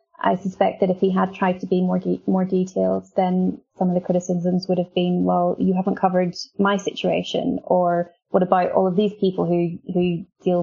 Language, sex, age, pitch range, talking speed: English, female, 20-39, 175-190 Hz, 210 wpm